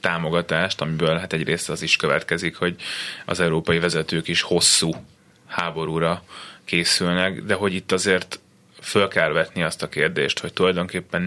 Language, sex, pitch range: Hungarian, male, 85-105 Hz